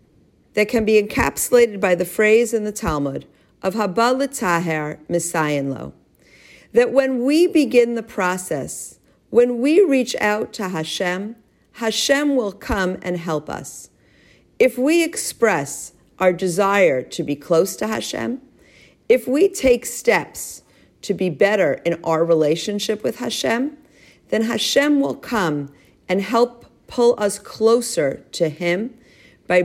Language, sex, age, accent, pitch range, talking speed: English, female, 50-69, American, 165-230 Hz, 135 wpm